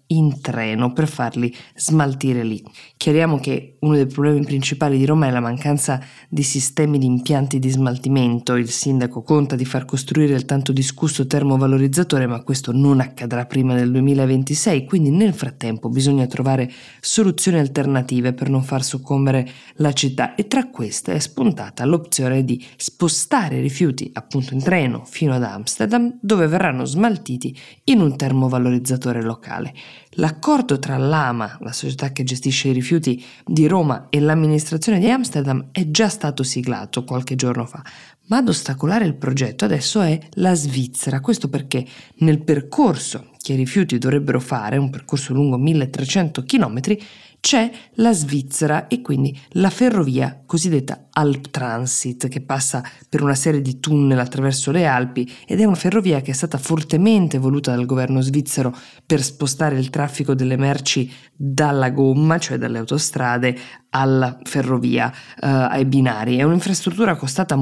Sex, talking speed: female, 150 wpm